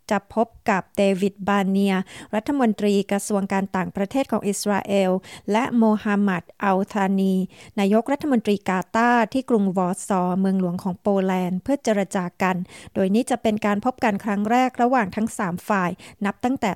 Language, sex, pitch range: Thai, female, 200-245 Hz